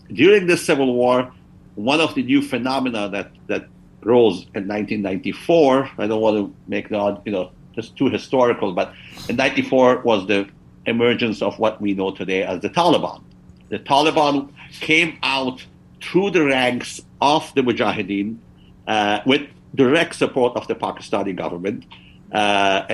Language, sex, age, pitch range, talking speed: English, male, 50-69, 105-140 Hz, 150 wpm